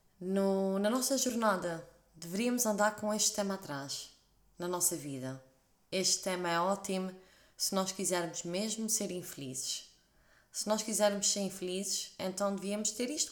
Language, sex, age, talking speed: English, female, 20-39, 140 wpm